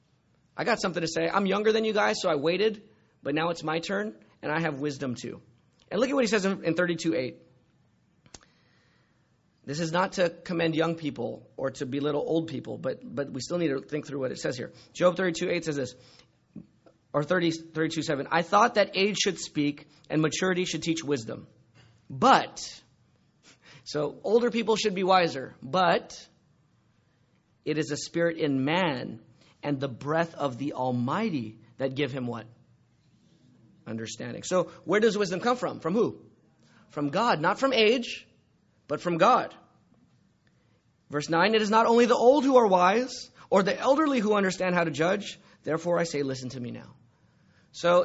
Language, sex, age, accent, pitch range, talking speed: English, male, 30-49, American, 145-200 Hz, 175 wpm